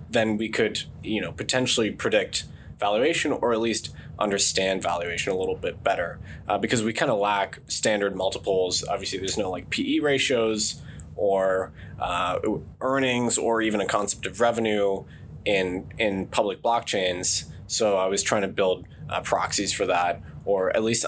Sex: male